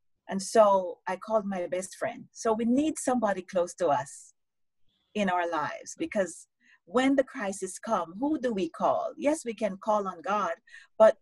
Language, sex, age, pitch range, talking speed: English, female, 40-59, 165-220 Hz, 175 wpm